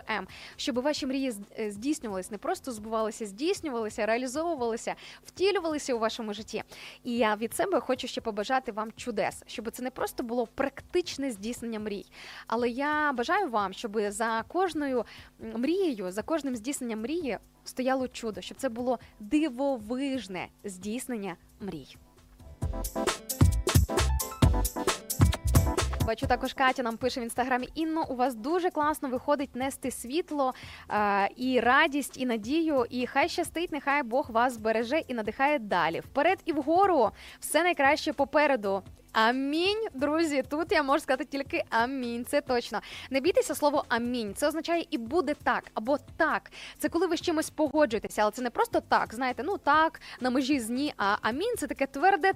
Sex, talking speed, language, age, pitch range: female, 150 wpm, Ukrainian, 20-39, 235-300 Hz